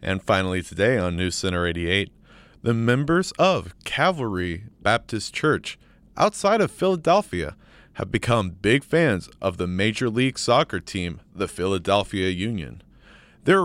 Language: English